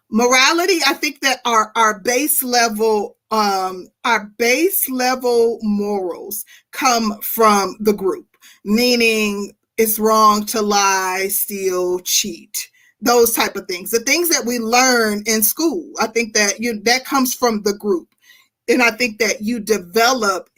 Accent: American